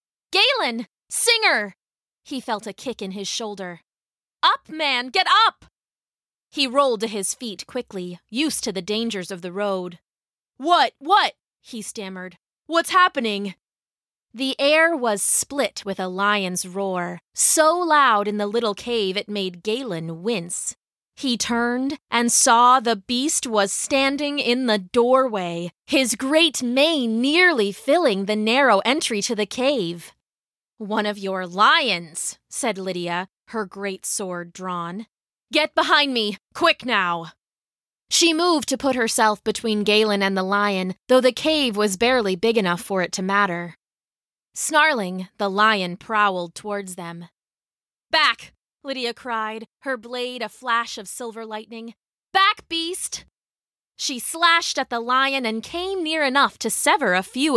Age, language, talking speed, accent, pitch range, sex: 20-39, English, 145 wpm, American, 195-270 Hz, female